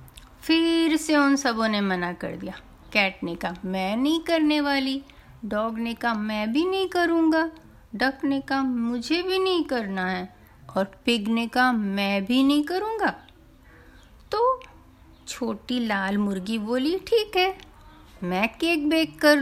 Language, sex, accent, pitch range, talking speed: Hindi, female, native, 210-325 Hz, 150 wpm